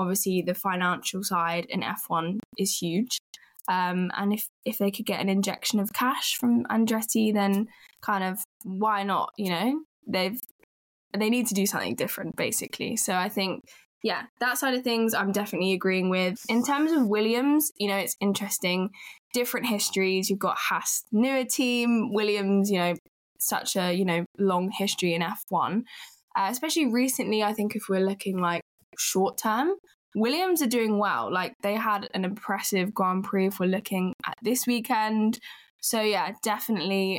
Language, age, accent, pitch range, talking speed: English, 10-29, British, 185-230 Hz, 170 wpm